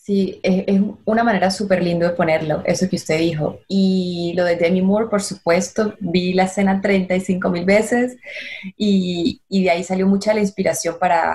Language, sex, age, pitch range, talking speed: Spanish, female, 20-39, 175-200 Hz, 175 wpm